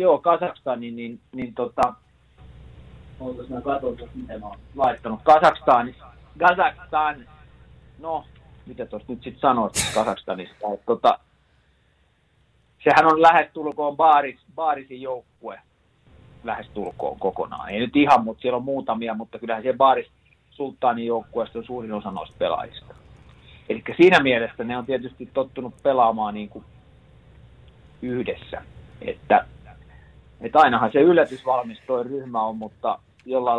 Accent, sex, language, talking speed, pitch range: native, male, Finnish, 120 wpm, 105-135 Hz